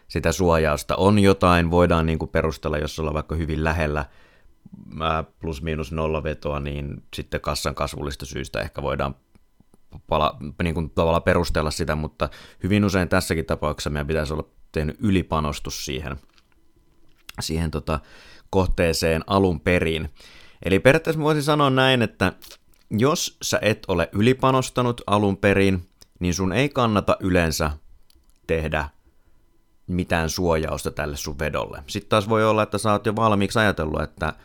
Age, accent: 30-49, native